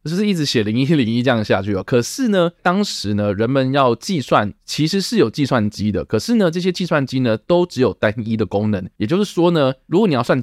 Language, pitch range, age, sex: Chinese, 105-145 Hz, 20-39, male